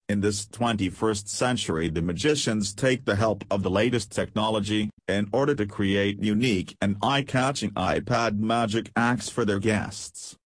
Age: 40-59